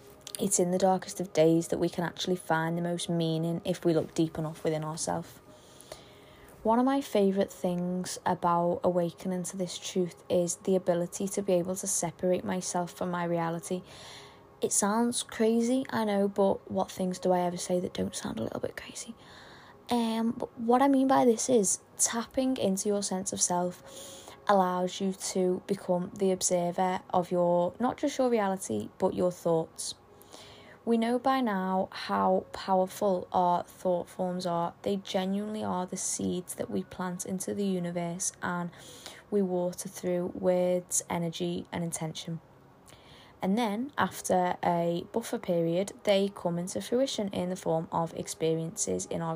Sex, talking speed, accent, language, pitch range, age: female, 165 wpm, British, English, 175-200 Hz, 20-39